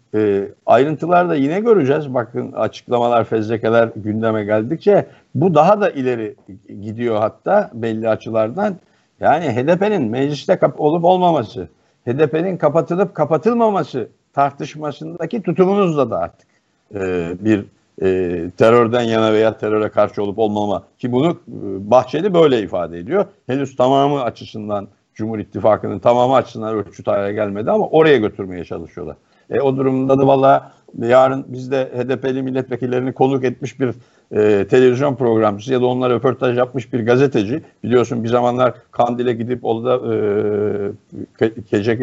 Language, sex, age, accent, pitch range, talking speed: Turkish, male, 60-79, native, 110-140 Hz, 130 wpm